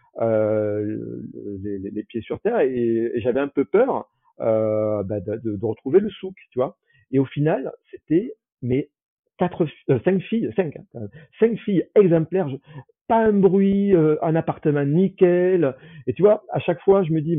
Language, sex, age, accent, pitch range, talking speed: French, male, 40-59, French, 115-155 Hz, 185 wpm